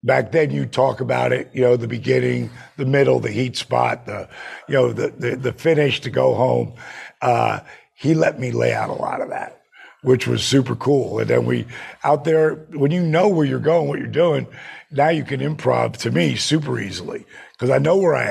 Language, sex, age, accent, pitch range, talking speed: English, male, 50-69, American, 115-140 Hz, 215 wpm